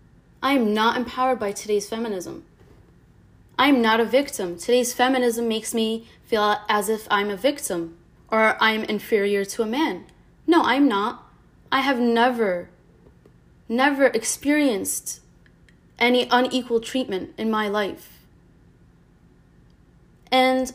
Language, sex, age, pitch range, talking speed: English, female, 20-39, 205-260 Hz, 120 wpm